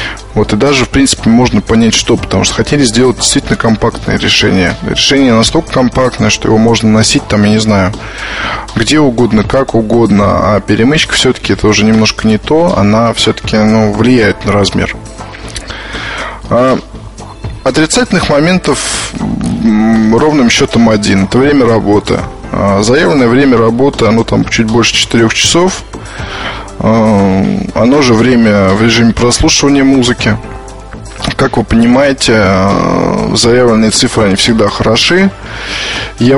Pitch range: 110-125 Hz